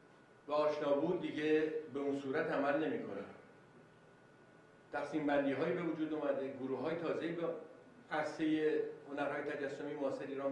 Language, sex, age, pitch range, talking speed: Persian, male, 50-69, 140-185 Hz, 120 wpm